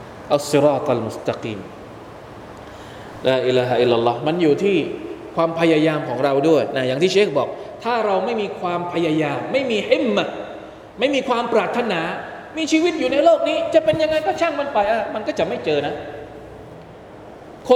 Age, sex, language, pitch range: 20-39, male, Thai, 155-245 Hz